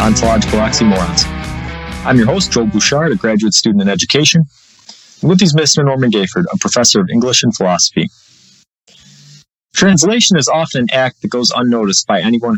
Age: 30-49